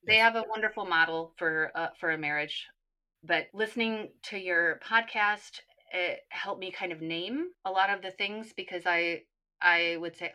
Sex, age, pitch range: female, 30-49, 170-230 Hz